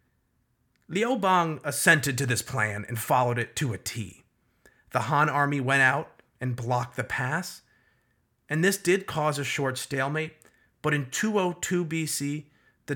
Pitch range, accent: 120-150 Hz, American